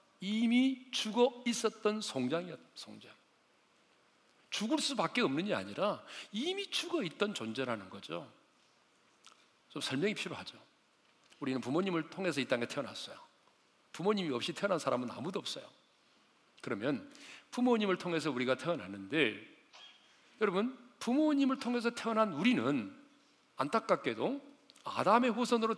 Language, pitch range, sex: Korean, 185-255 Hz, male